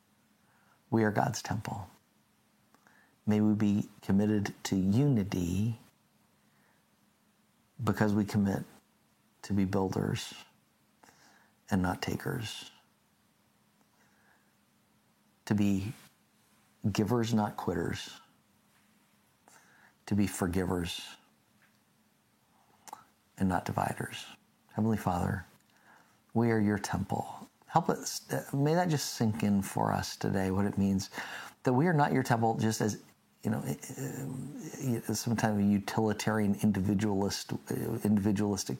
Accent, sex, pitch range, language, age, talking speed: American, male, 100-115 Hz, English, 50-69, 100 wpm